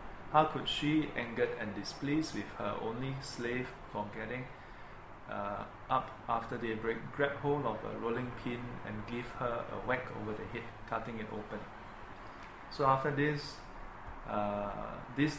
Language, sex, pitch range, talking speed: English, male, 110-130 Hz, 150 wpm